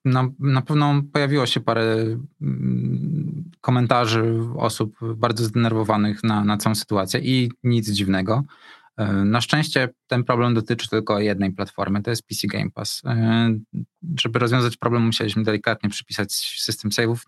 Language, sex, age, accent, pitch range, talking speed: Polish, male, 20-39, native, 105-120 Hz, 130 wpm